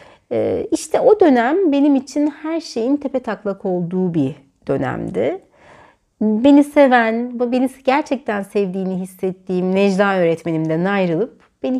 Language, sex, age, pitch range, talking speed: Turkish, female, 60-79, 185-265 Hz, 105 wpm